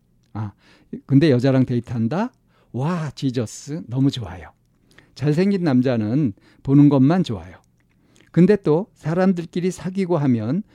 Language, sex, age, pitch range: Korean, male, 50-69, 120-165 Hz